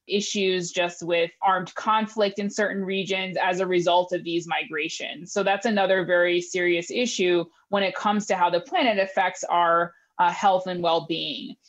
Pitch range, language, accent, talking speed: 180-220 Hz, English, American, 170 wpm